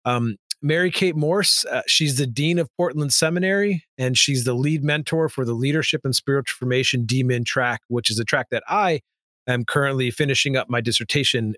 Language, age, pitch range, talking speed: English, 40-59, 125-155 Hz, 185 wpm